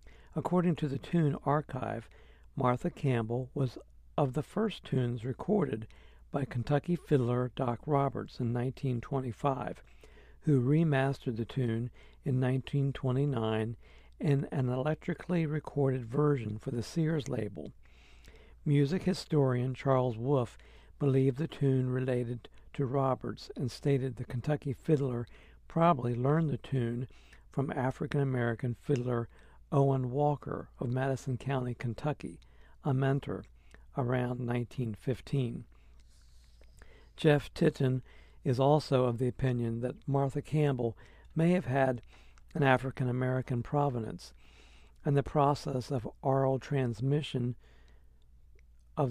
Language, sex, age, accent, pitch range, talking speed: English, male, 60-79, American, 115-145 Hz, 110 wpm